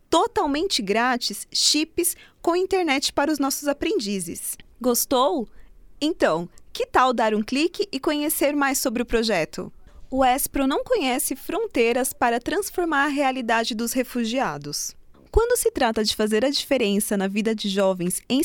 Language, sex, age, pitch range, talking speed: Portuguese, female, 20-39, 220-295 Hz, 145 wpm